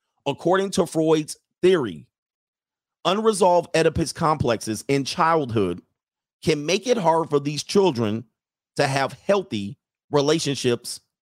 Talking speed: 105 wpm